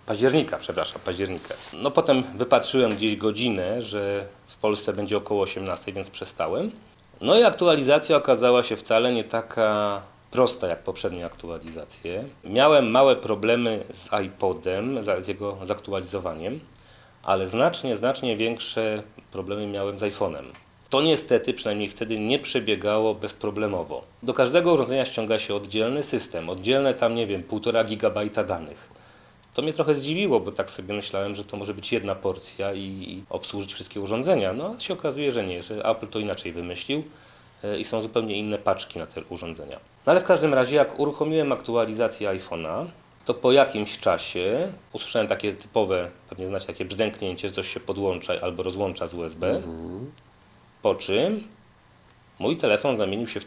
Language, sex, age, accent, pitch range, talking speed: Polish, male, 40-59, native, 100-120 Hz, 155 wpm